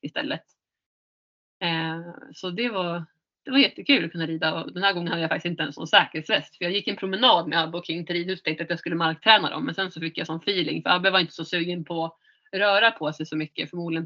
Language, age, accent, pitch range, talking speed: Swedish, 30-49, native, 160-185 Hz, 255 wpm